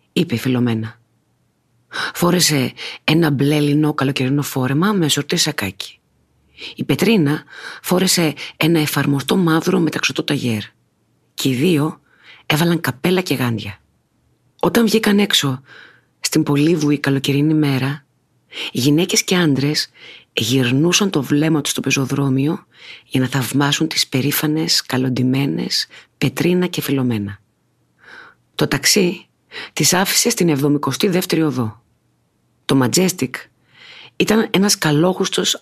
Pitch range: 130-170 Hz